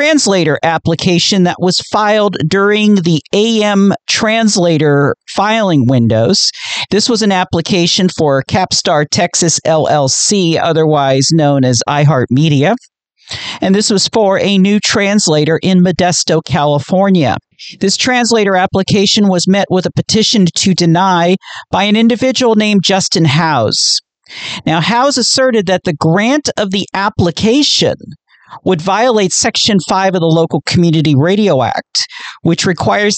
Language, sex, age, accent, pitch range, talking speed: English, male, 50-69, American, 165-210 Hz, 125 wpm